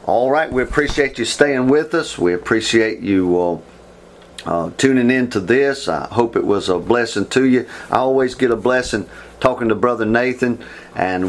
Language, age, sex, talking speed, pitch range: English, 40-59, male, 185 wpm, 100-125 Hz